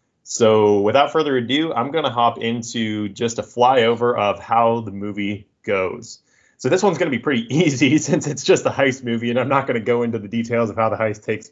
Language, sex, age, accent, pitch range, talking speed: English, male, 30-49, American, 105-120 Hz, 235 wpm